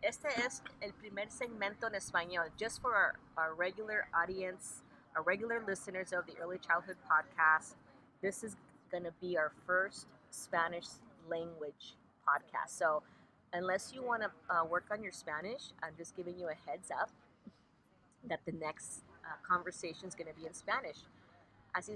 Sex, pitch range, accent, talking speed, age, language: female, 165-195 Hz, American, 165 wpm, 30-49, English